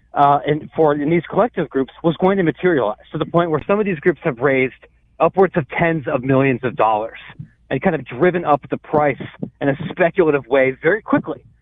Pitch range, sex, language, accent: 145-190 Hz, male, English, American